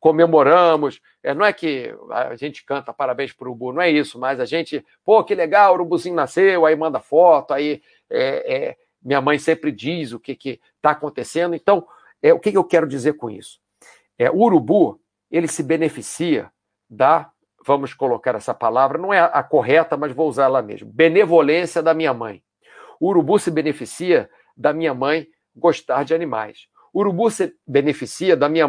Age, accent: 50-69, Brazilian